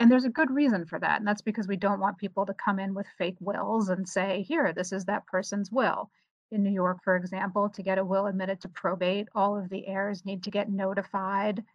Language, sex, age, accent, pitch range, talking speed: English, female, 30-49, American, 190-210 Hz, 245 wpm